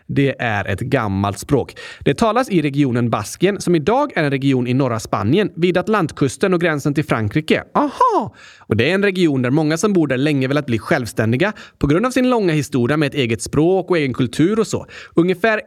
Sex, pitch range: male, 145-235 Hz